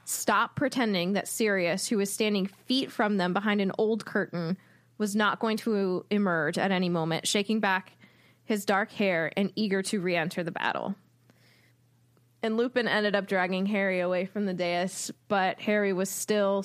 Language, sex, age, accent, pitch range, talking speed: English, female, 20-39, American, 170-215 Hz, 170 wpm